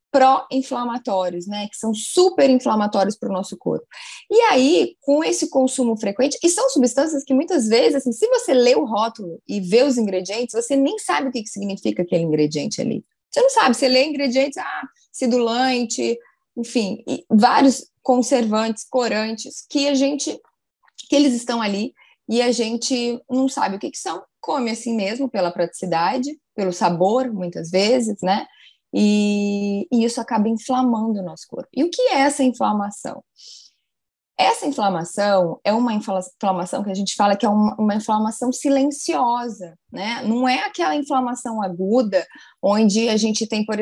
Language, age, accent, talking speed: Portuguese, 20-39, Brazilian, 165 wpm